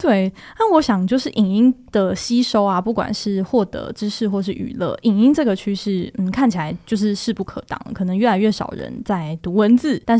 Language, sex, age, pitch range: Chinese, female, 10-29, 195-250 Hz